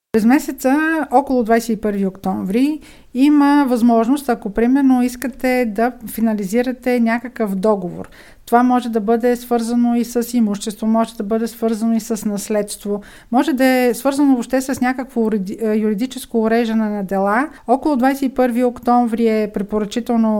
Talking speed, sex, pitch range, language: 130 wpm, female, 220-260 Hz, Bulgarian